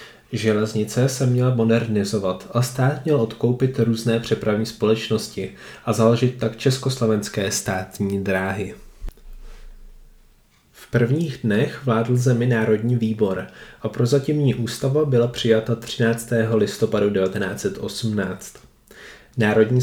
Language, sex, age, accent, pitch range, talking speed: Czech, male, 20-39, native, 105-120 Hz, 100 wpm